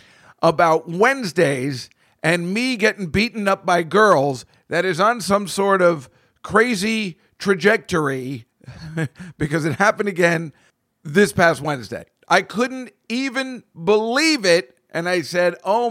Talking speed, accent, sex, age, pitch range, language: 125 wpm, American, male, 50-69, 150-210 Hz, English